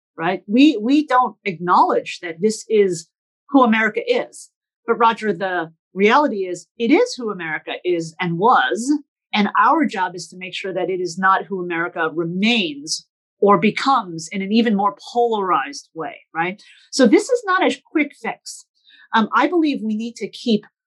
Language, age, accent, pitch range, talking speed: English, 40-59, American, 185-250 Hz, 175 wpm